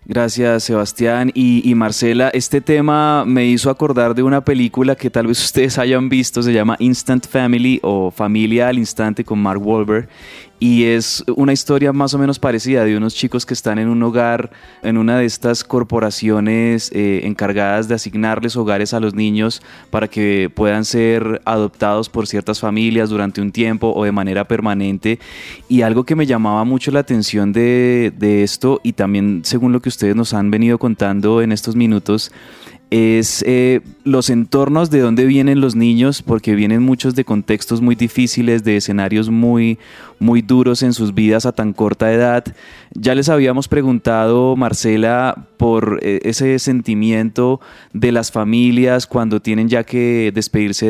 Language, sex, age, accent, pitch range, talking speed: Spanish, male, 20-39, Colombian, 110-125 Hz, 165 wpm